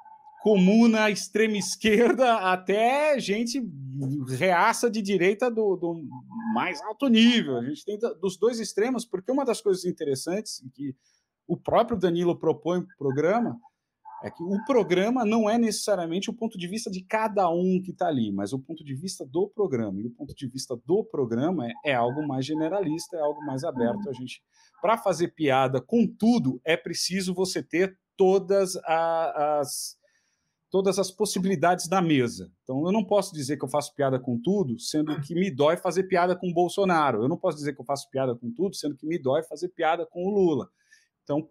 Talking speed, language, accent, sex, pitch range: 185 wpm, Portuguese, Brazilian, male, 150-215 Hz